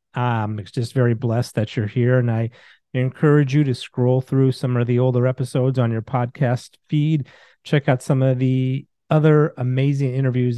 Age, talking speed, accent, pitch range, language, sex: 40-59, 180 wpm, American, 115-140 Hz, English, male